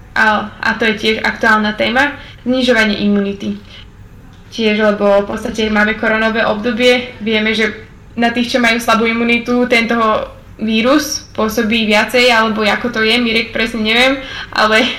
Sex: female